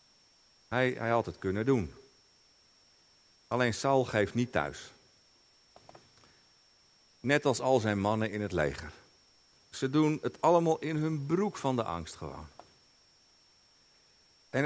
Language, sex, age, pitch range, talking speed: Dutch, male, 50-69, 115-170 Hz, 125 wpm